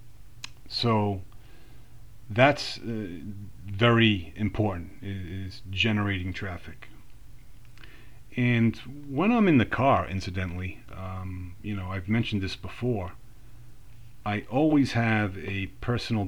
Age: 40-59